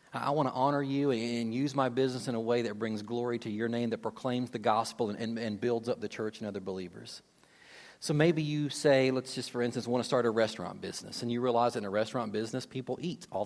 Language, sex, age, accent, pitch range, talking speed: English, male, 40-59, American, 125-160 Hz, 250 wpm